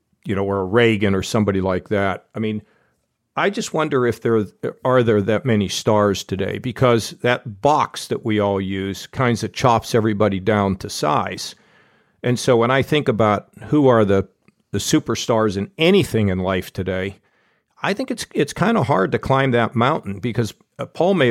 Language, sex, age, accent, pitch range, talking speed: English, male, 50-69, American, 105-130 Hz, 180 wpm